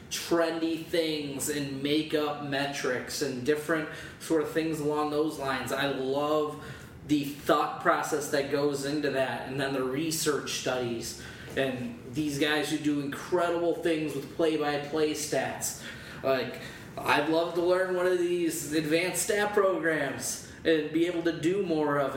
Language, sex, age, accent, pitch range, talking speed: English, male, 20-39, American, 140-165 Hz, 150 wpm